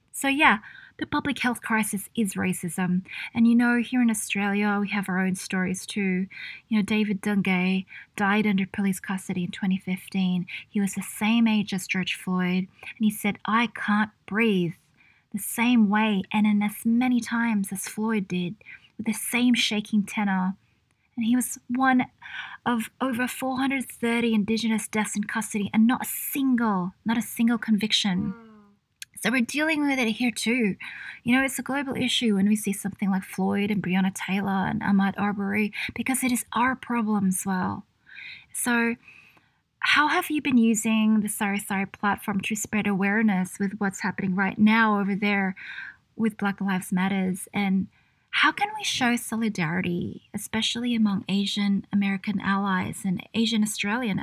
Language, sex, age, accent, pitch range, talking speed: English, female, 20-39, Australian, 195-230 Hz, 165 wpm